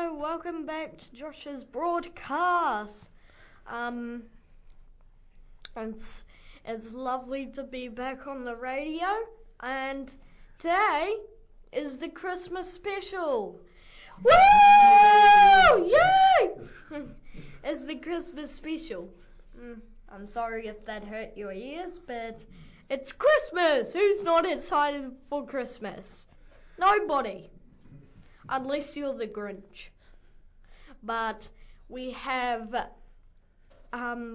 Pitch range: 235-340 Hz